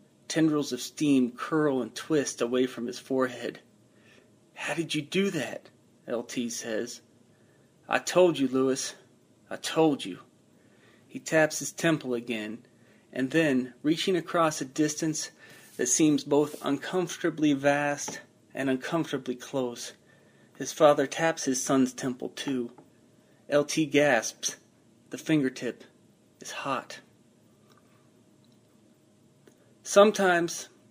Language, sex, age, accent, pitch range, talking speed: English, male, 30-49, American, 125-155 Hz, 110 wpm